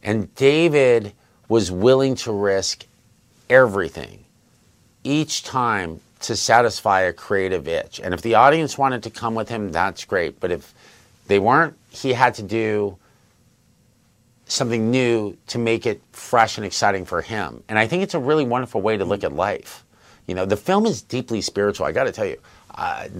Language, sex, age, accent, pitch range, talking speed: English, male, 50-69, American, 90-115 Hz, 175 wpm